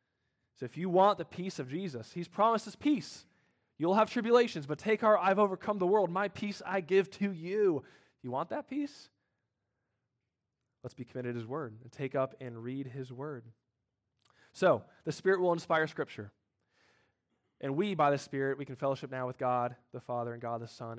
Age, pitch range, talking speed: 20-39, 125-175 Hz, 195 wpm